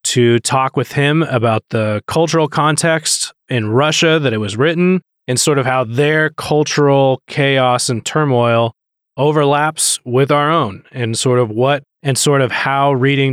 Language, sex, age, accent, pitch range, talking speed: English, male, 20-39, American, 120-145 Hz, 160 wpm